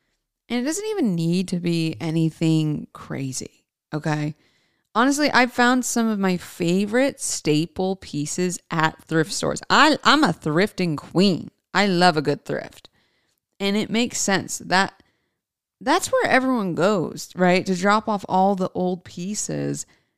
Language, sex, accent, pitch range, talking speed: English, female, American, 170-235 Hz, 145 wpm